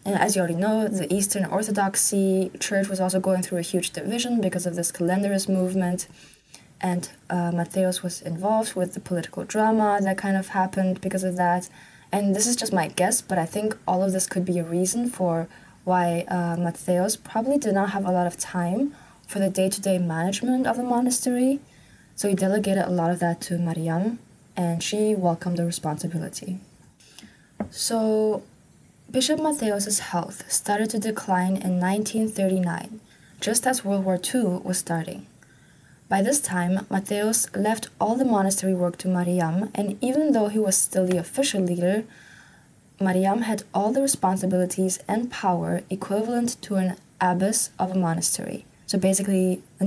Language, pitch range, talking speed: English, 180-210 Hz, 165 wpm